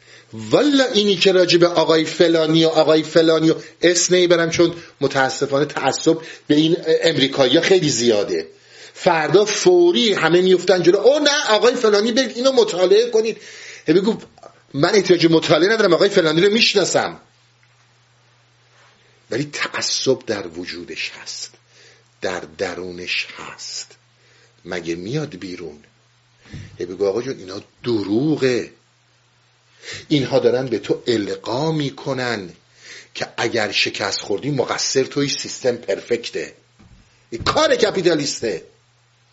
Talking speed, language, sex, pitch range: 115 wpm, Persian, male, 120-185 Hz